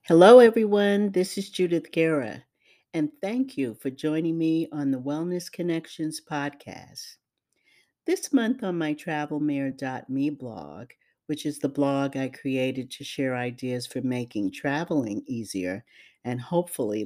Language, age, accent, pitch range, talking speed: English, 50-69, American, 135-185 Hz, 135 wpm